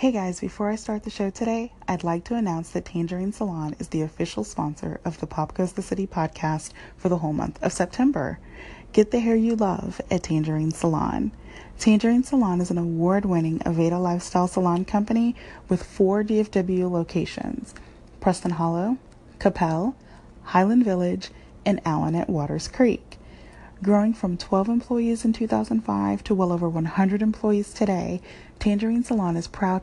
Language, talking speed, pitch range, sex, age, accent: English, 160 wpm, 170-210 Hz, female, 30-49, American